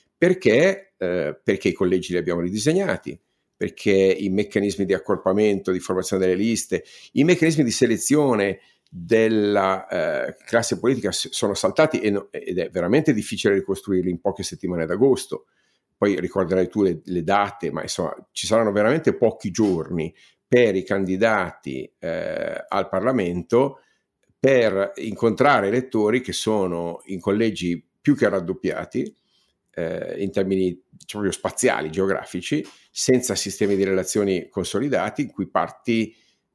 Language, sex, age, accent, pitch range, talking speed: Italian, male, 50-69, native, 95-115 Hz, 130 wpm